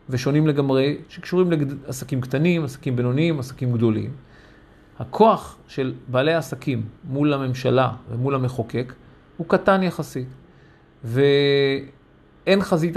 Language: Hebrew